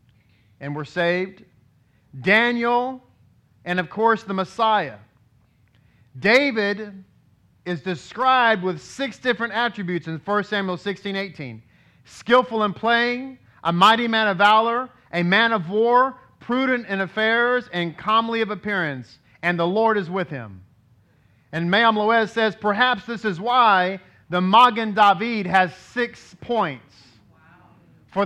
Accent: American